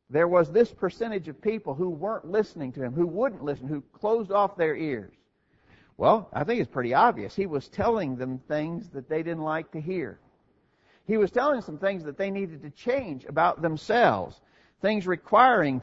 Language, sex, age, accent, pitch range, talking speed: English, male, 50-69, American, 145-200 Hz, 190 wpm